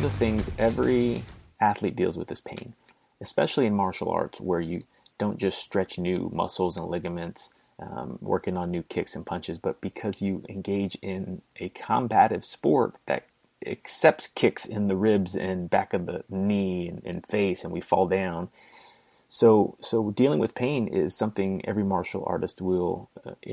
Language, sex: English, male